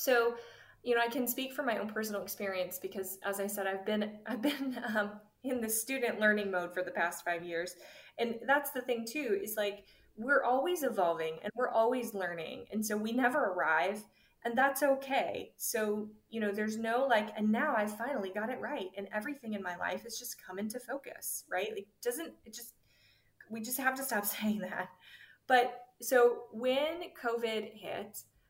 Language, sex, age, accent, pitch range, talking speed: English, female, 20-39, American, 195-240 Hz, 195 wpm